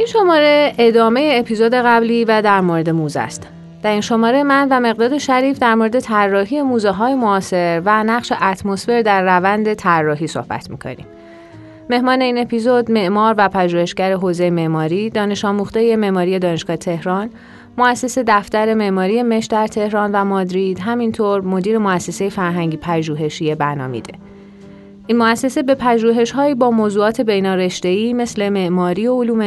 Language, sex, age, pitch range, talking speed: English, female, 30-49, 175-230 Hz, 145 wpm